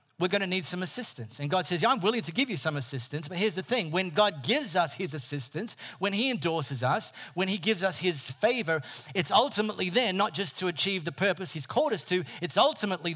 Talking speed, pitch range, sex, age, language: 235 wpm, 145-200 Hz, male, 40-59, English